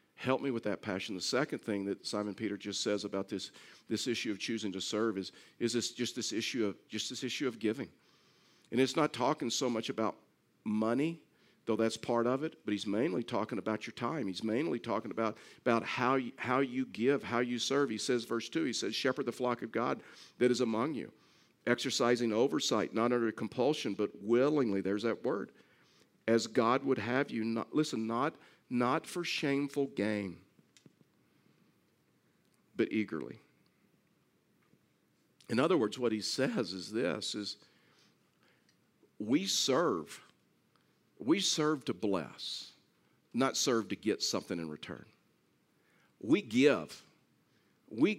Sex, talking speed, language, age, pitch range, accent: male, 160 wpm, English, 50-69, 110-140 Hz, American